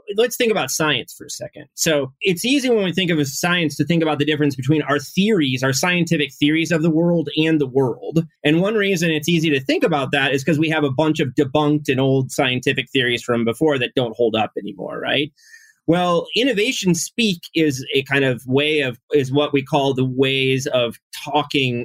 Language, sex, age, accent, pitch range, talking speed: English, male, 30-49, American, 125-160 Hz, 215 wpm